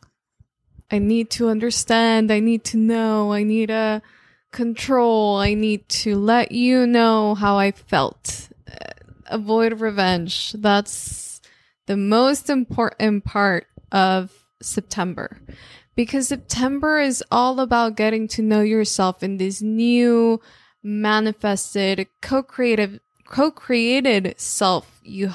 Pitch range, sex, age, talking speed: 210-245 Hz, female, 20-39, 115 wpm